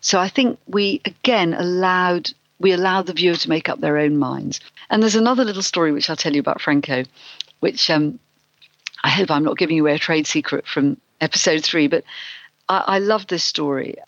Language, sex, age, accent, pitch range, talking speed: English, female, 50-69, British, 150-215 Hz, 200 wpm